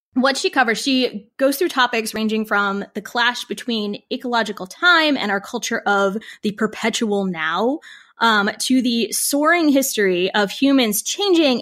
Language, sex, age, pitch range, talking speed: English, female, 20-39, 200-255 Hz, 150 wpm